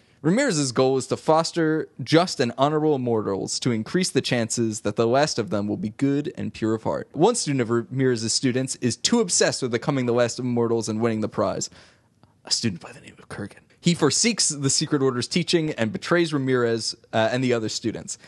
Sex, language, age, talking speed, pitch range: male, English, 20-39, 215 wpm, 115-155 Hz